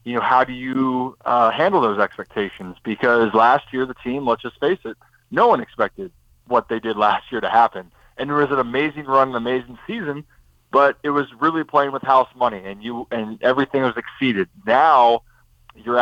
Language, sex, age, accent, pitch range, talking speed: English, male, 20-39, American, 115-130 Hz, 200 wpm